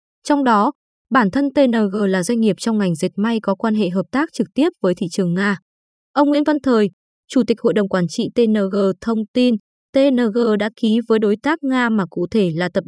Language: Vietnamese